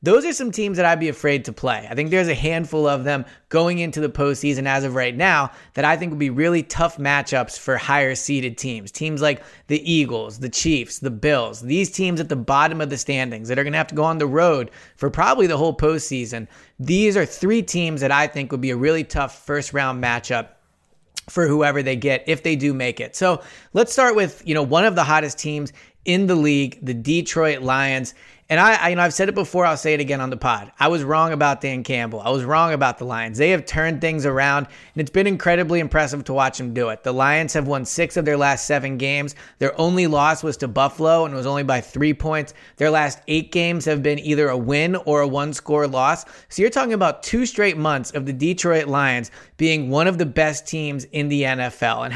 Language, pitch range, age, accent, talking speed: English, 135-165 Hz, 20-39, American, 235 wpm